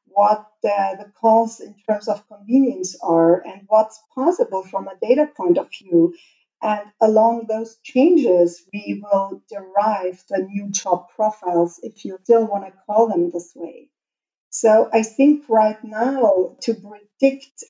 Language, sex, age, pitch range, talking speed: English, female, 50-69, 195-240 Hz, 155 wpm